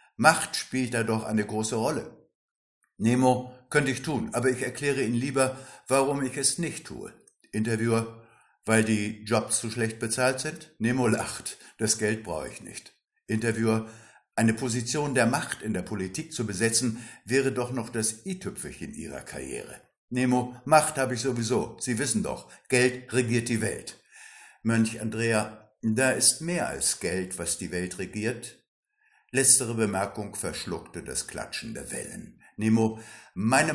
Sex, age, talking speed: male, 60-79, 150 wpm